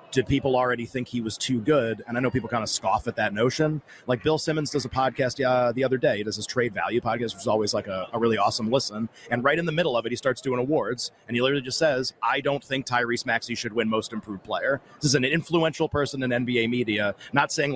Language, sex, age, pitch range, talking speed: English, male, 30-49, 115-140 Hz, 265 wpm